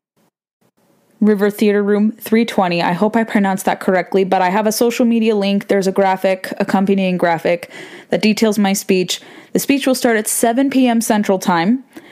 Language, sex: English, female